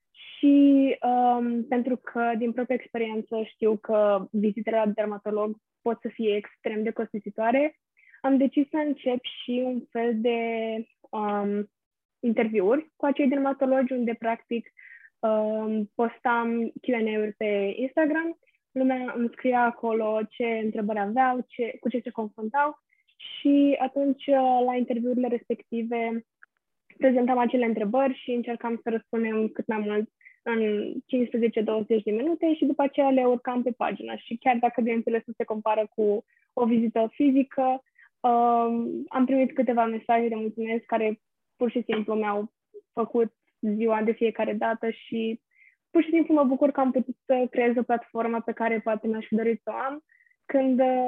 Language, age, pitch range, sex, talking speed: Romanian, 20-39, 225-260 Hz, female, 145 wpm